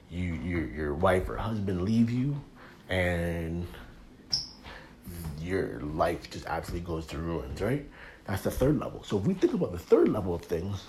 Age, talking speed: 30-49, 170 wpm